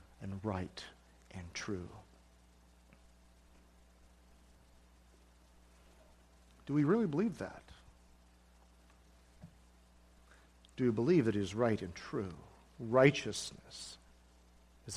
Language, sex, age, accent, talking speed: English, male, 50-69, American, 80 wpm